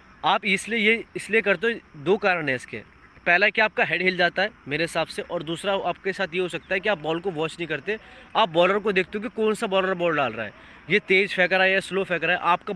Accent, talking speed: native, 275 wpm